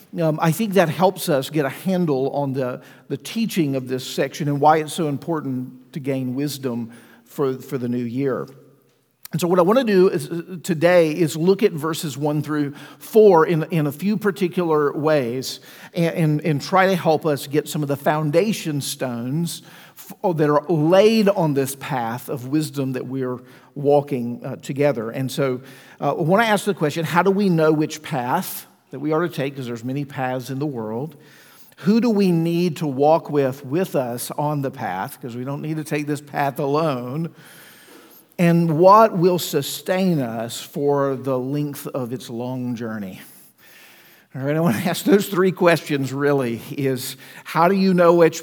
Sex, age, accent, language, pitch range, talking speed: male, 50-69, American, English, 135-175 Hz, 190 wpm